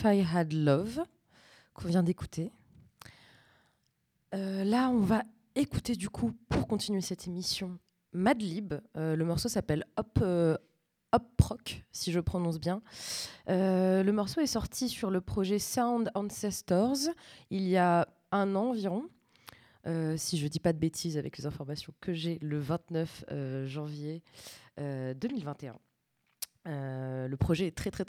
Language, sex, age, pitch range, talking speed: French, female, 20-39, 160-205 Hz, 145 wpm